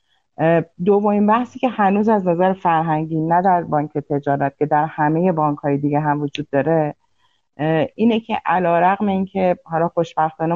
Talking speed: 165 wpm